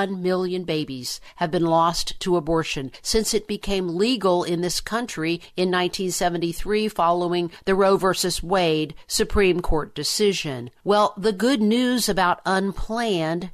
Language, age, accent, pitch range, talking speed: English, 50-69, American, 165-200 Hz, 135 wpm